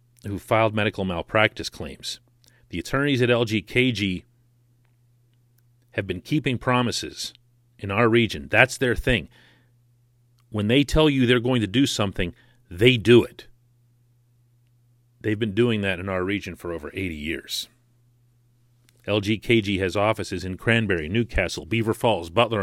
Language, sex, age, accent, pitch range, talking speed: English, male, 40-59, American, 110-120 Hz, 135 wpm